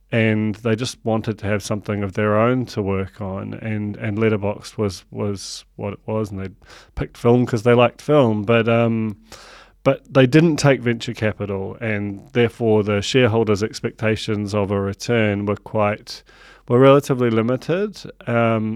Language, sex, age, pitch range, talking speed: English, male, 30-49, 105-115 Hz, 165 wpm